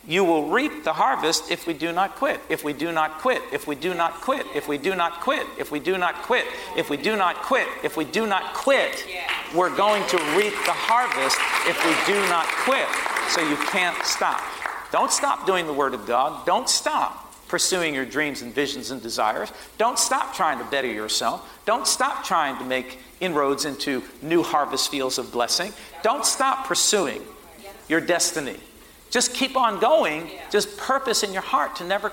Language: English